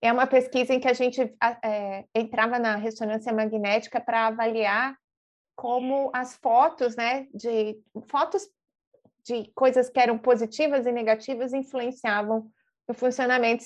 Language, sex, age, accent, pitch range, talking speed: Portuguese, female, 30-49, Brazilian, 220-255 Hz, 125 wpm